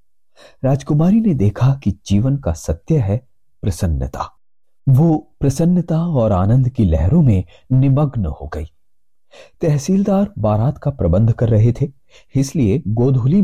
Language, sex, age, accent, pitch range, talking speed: Hindi, male, 40-59, native, 95-150 Hz, 125 wpm